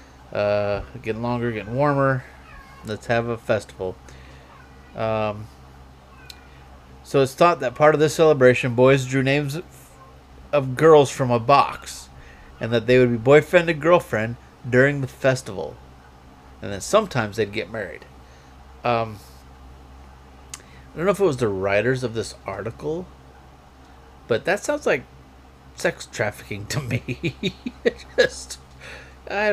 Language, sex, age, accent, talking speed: English, male, 30-49, American, 135 wpm